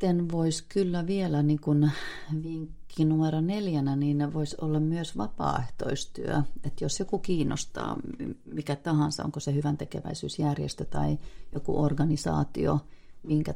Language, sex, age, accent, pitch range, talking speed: Finnish, female, 30-49, native, 130-160 Hz, 115 wpm